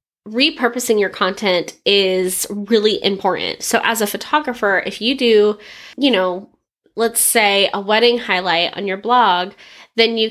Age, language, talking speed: 10-29, English, 145 wpm